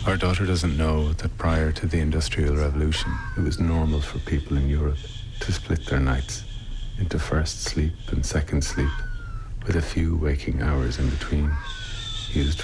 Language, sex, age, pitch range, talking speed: English, male, 50-69, 75-110 Hz, 165 wpm